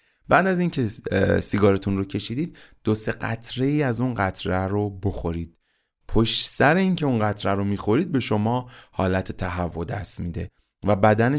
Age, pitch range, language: 20-39, 95-130 Hz, Persian